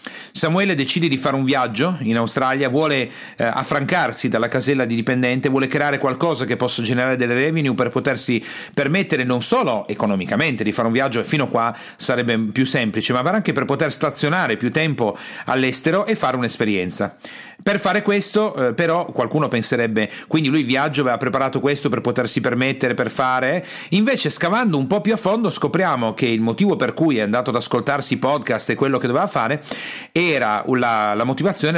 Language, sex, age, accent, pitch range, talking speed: Italian, male, 40-59, native, 120-160 Hz, 180 wpm